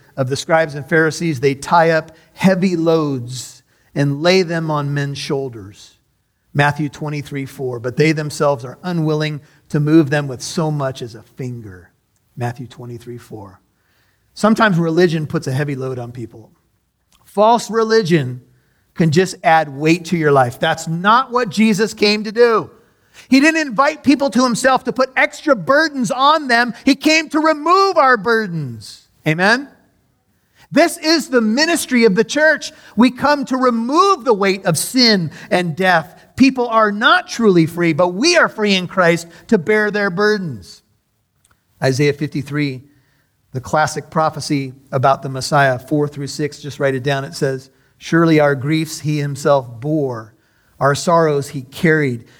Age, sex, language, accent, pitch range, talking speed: 40-59, male, English, American, 140-215 Hz, 160 wpm